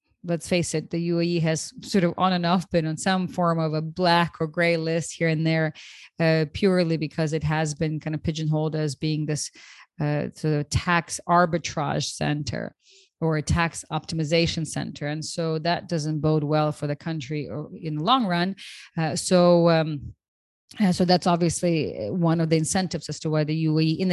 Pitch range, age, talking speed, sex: 155-180 Hz, 30-49, 190 wpm, female